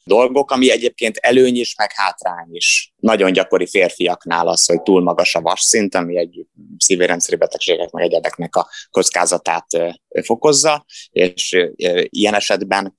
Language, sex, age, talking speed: Hungarian, male, 20-39, 135 wpm